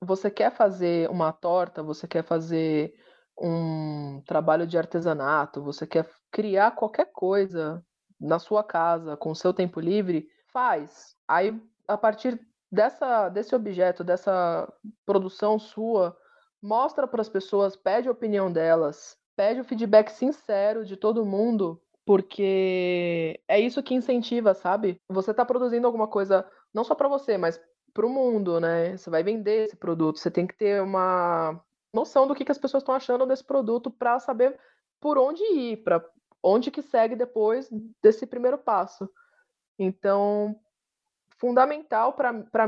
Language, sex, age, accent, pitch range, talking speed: English, female, 20-39, Brazilian, 185-255 Hz, 145 wpm